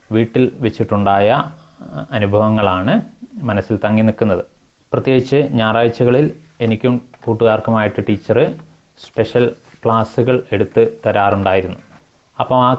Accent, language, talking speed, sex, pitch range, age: native, Malayalam, 80 wpm, male, 105-115 Hz, 20-39